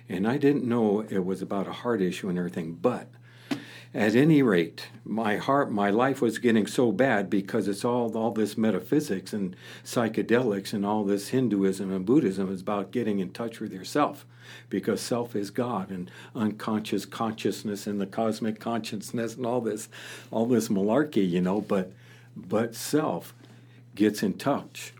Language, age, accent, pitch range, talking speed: English, 60-79, American, 95-120 Hz, 170 wpm